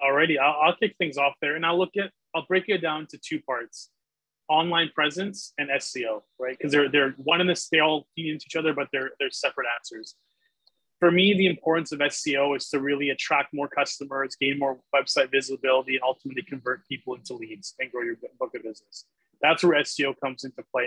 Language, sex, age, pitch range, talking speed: English, male, 20-39, 135-160 Hz, 215 wpm